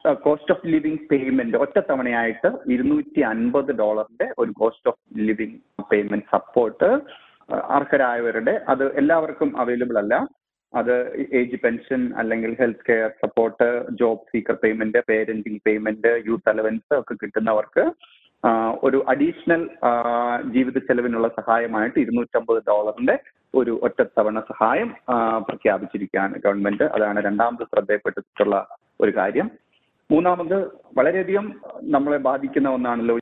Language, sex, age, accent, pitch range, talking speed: Malayalam, male, 30-49, native, 115-140 Hz, 100 wpm